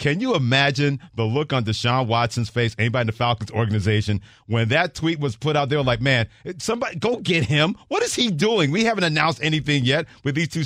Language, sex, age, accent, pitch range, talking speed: English, male, 40-59, American, 110-135 Hz, 220 wpm